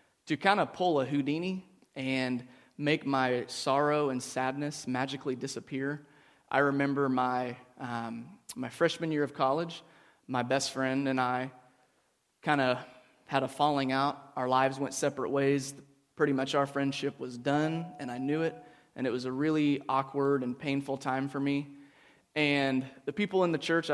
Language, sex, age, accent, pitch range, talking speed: English, male, 20-39, American, 130-145 Hz, 165 wpm